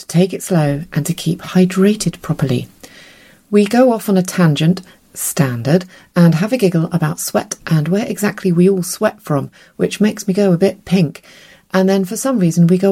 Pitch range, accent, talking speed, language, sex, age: 150-190 Hz, British, 195 wpm, English, female, 30-49